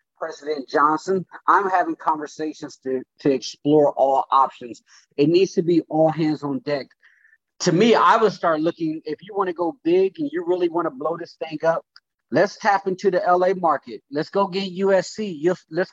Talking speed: 190 wpm